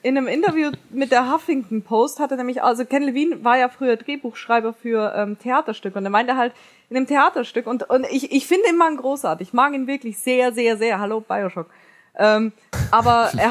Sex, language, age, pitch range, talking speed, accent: female, English, 20-39, 215-255 Hz, 210 wpm, German